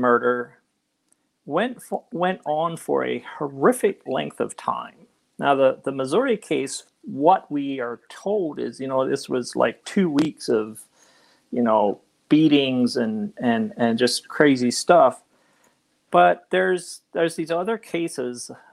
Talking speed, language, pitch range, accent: 140 wpm, English, 125-170 Hz, American